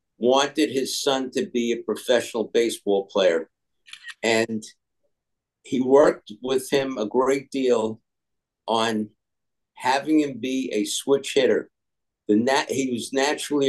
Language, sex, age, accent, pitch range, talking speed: English, male, 50-69, American, 110-140 Hz, 120 wpm